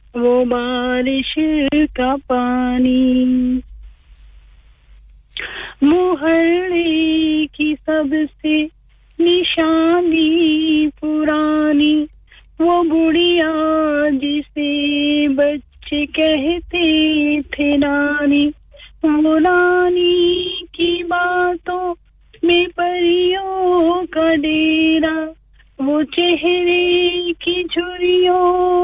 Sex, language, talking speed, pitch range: female, English, 55 wpm, 265-350 Hz